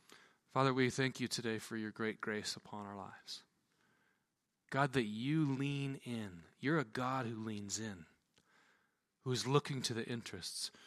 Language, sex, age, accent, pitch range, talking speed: English, male, 40-59, American, 105-130 Hz, 160 wpm